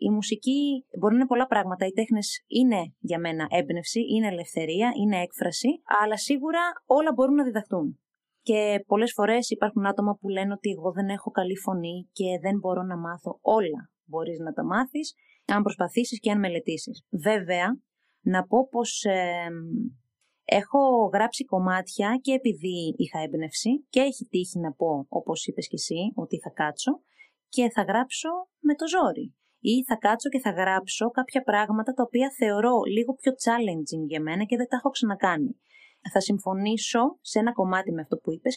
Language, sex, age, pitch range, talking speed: Greek, female, 20-39, 180-250 Hz, 175 wpm